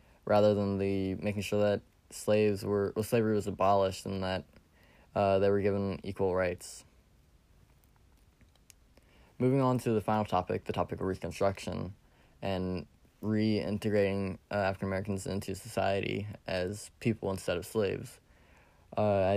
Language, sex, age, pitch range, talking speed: English, male, 20-39, 95-110 Hz, 130 wpm